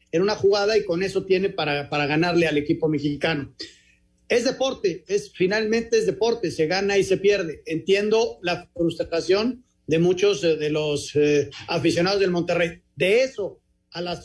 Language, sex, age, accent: Spanish, male, 40-59, Mexican